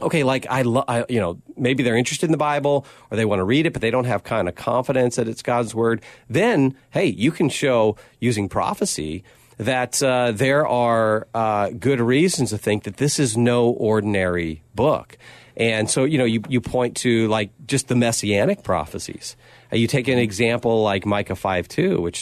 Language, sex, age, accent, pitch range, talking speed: English, male, 40-59, American, 100-125 Hz, 200 wpm